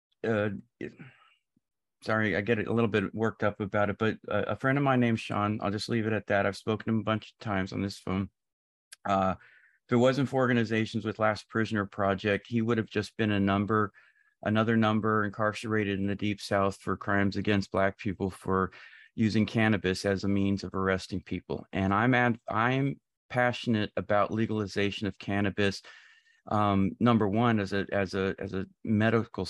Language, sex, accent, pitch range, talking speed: English, male, American, 100-115 Hz, 185 wpm